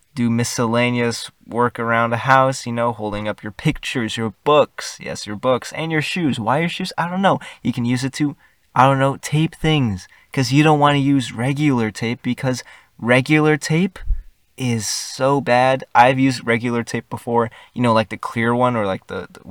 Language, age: English, 20-39